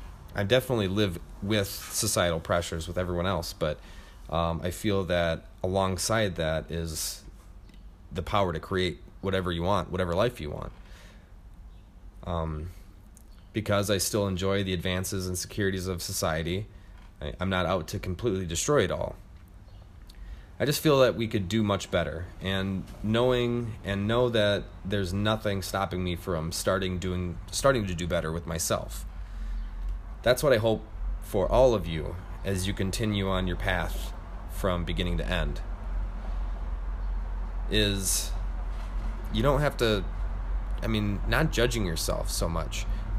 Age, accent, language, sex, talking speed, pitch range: 30-49, American, English, male, 145 wpm, 90-100 Hz